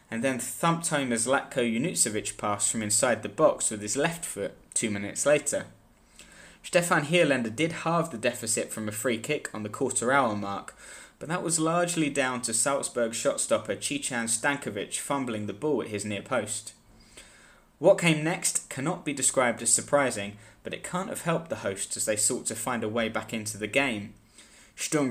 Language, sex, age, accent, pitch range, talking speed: English, male, 20-39, British, 110-145 Hz, 185 wpm